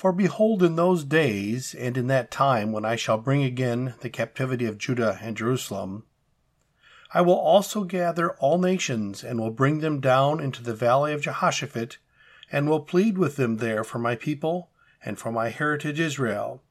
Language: English